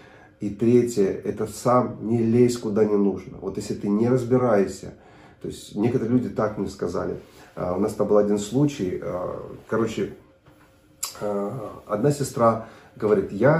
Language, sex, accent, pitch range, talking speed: Russian, male, native, 110-145 Hz, 140 wpm